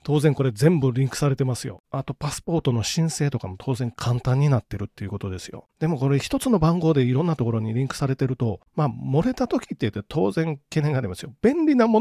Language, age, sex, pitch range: Japanese, 40-59, male, 115-165 Hz